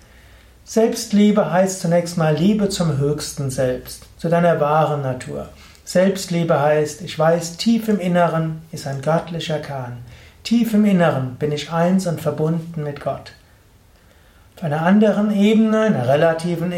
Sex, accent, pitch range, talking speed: male, German, 145-190 Hz, 140 wpm